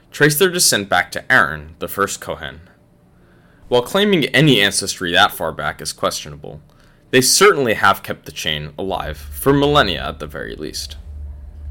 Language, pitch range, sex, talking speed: English, 75-120 Hz, male, 160 wpm